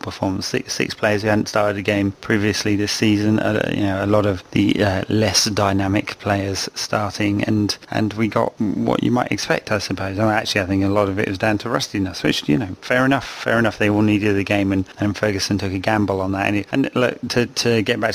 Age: 30-49